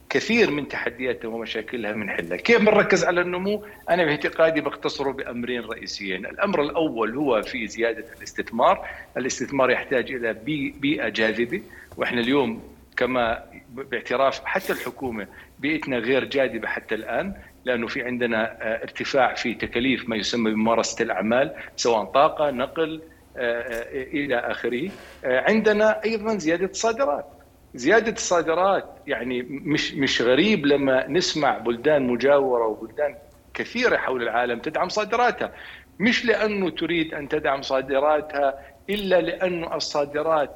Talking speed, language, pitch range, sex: 120 wpm, Arabic, 125-185 Hz, male